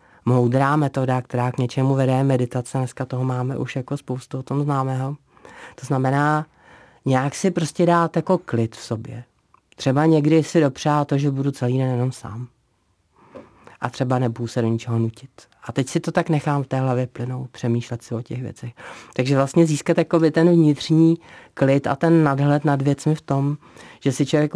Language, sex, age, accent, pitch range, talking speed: Czech, male, 30-49, native, 125-145 Hz, 185 wpm